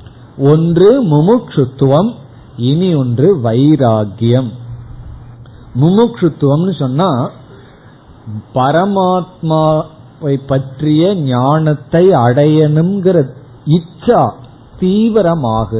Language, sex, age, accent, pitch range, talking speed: Tamil, male, 50-69, native, 125-175 Hz, 45 wpm